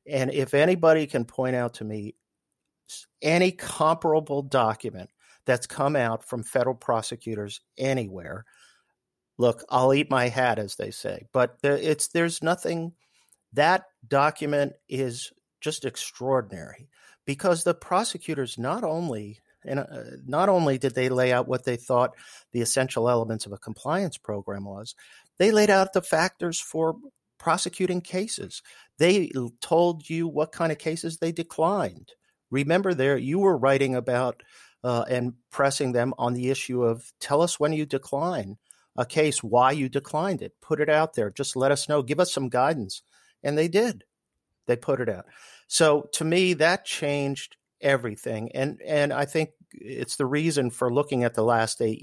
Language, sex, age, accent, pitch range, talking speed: English, male, 50-69, American, 125-160 Hz, 165 wpm